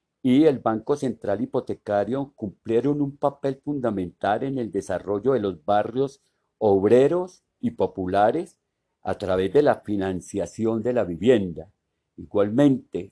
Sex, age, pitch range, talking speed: male, 50-69, 100-135 Hz, 125 wpm